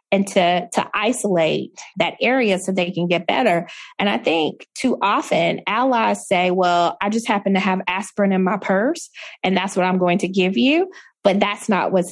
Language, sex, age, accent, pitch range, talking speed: English, female, 20-39, American, 185-225 Hz, 200 wpm